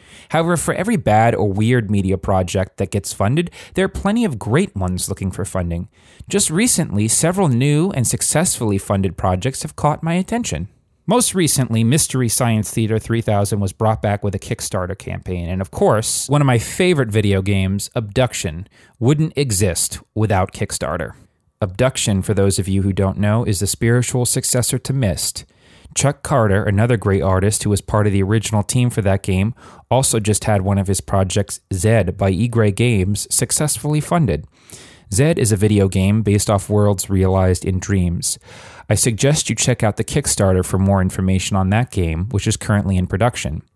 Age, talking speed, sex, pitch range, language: 30-49, 180 wpm, male, 95-125 Hz, English